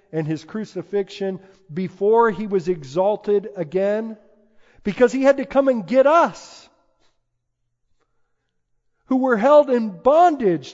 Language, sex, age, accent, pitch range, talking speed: English, male, 50-69, American, 125-210 Hz, 115 wpm